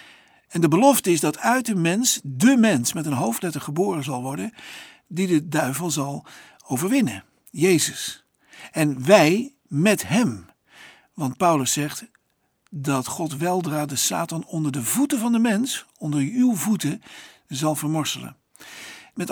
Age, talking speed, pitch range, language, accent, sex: 60-79, 145 wpm, 125-195 Hz, Dutch, Dutch, male